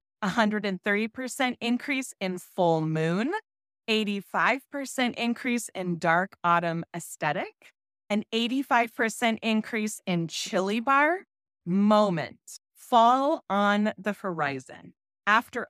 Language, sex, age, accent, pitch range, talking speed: English, female, 30-49, American, 180-235 Hz, 85 wpm